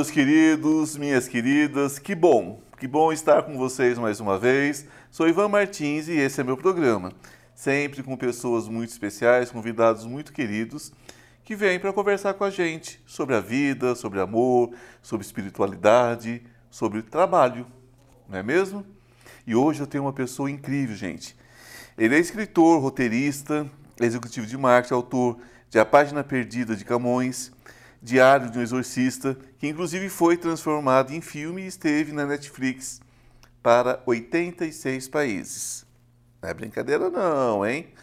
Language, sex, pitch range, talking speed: Portuguese, male, 120-155 Hz, 145 wpm